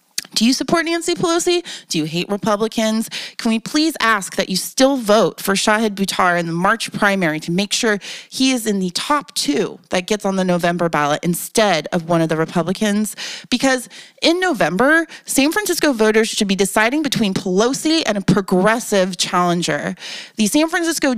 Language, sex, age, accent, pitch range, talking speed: English, female, 30-49, American, 185-260 Hz, 180 wpm